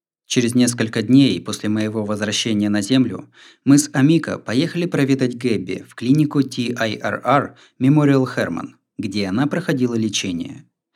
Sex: male